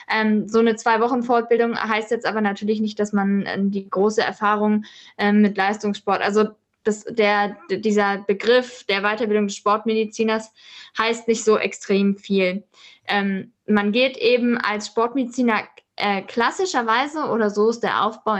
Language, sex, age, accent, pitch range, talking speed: German, female, 10-29, German, 205-235 Hz, 125 wpm